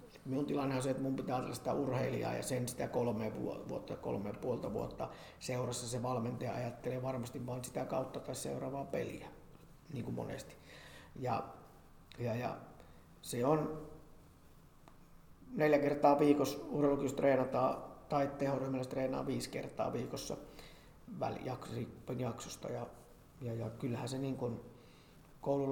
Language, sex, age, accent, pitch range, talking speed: Finnish, male, 50-69, native, 125-145 Hz, 130 wpm